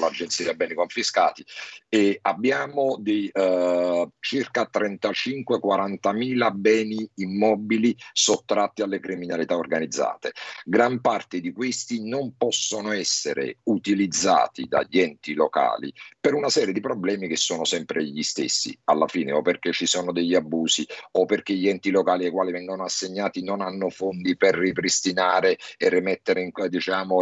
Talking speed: 140 wpm